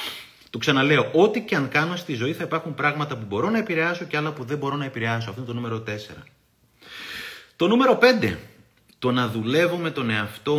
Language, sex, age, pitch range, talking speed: Greek, male, 30-49, 105-145 Hz, 205 wpm